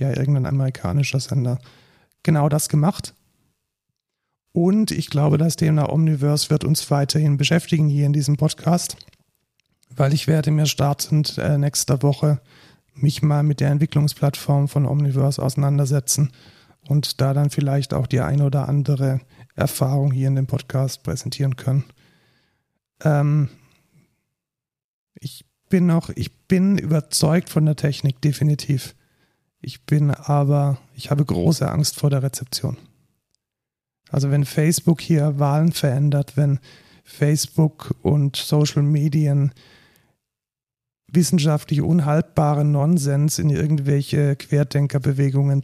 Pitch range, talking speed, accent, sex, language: 135-150 Hz, 115 wpm, German, male, German